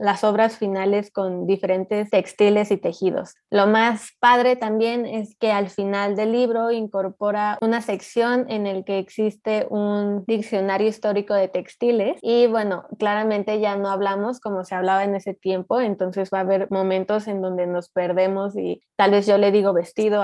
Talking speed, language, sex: 170 wpm, Spanish, female